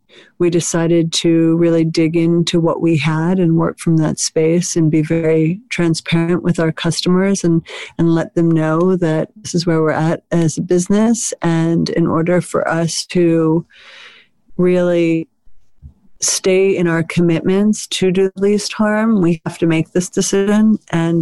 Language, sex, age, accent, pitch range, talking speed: English, female, 50-69, American, 165-180 Hz, 165 wpm